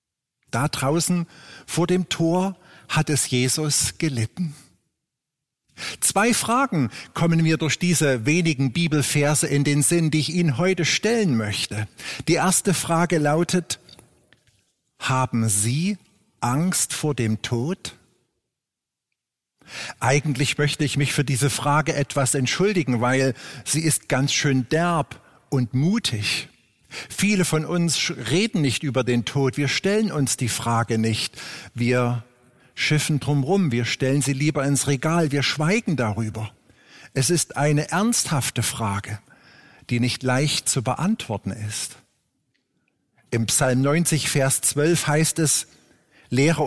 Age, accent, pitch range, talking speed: 50-69, German, 125-165 Hz, 125 wpm